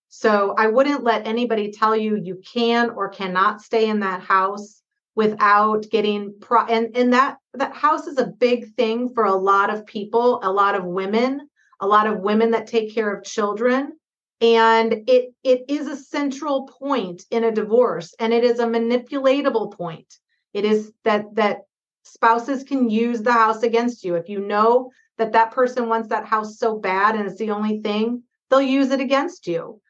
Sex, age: female, 40-59